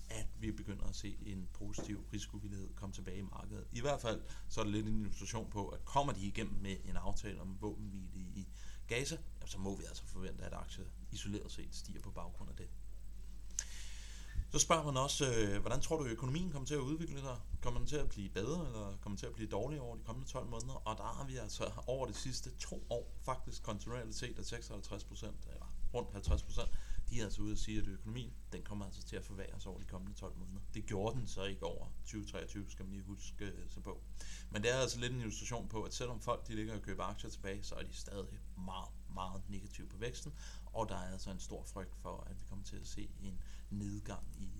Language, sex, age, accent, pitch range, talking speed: Danish, male, 30-49, native, 95-110 Hz, 235 wpm